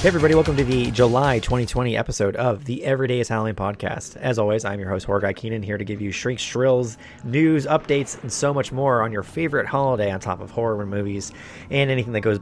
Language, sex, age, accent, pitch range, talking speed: English, male, 30-49, American, 100-130 Hz, 220 wpm